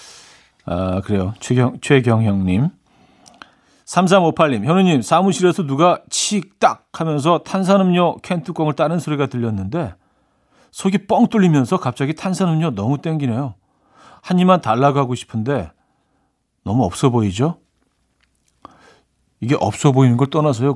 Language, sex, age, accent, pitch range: Korean, male, 40-59, native, 115-170 Hz